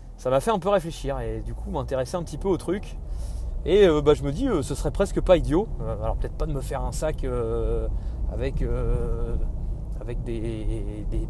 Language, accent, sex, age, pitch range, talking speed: French, French, male, 30-49, 110-145 Hz, 225 wpm